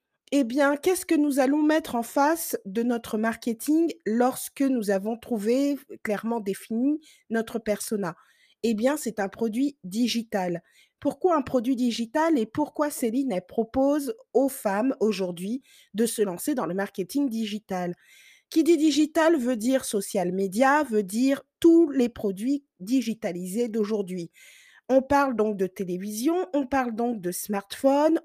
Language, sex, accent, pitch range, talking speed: French, female, French, 205-280 Hz, 145 wpm